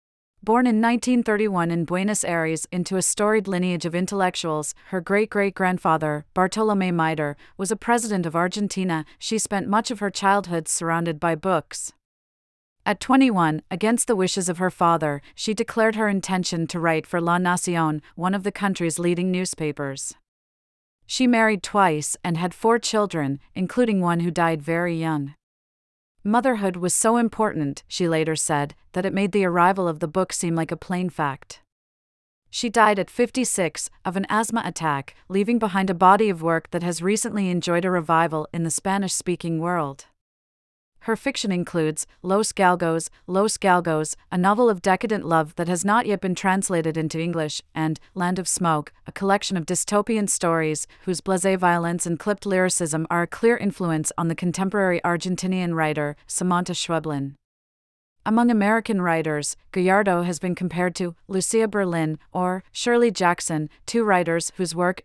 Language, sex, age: English, female, 40-59